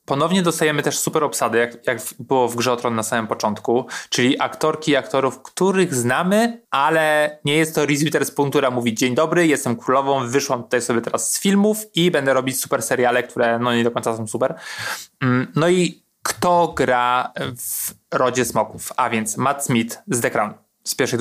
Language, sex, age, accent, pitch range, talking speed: Polish, male, 20-39, native, 120-150 Hz, 190 wpm